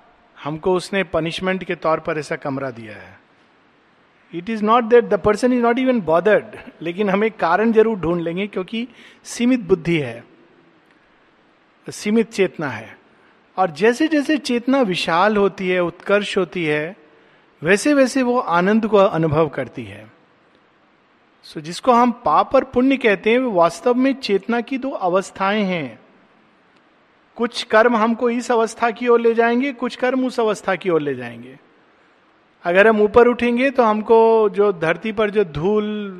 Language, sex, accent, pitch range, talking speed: Hindi, male, native, 180-235 Hz, 160 wpm